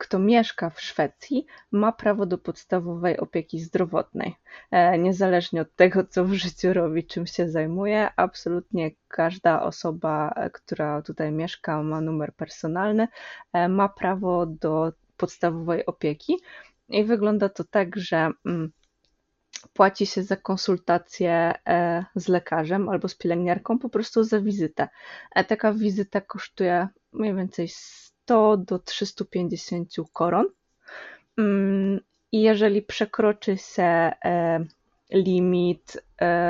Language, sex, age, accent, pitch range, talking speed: English, female, 20-39, Polish, 170-210 Hz, 105 wpm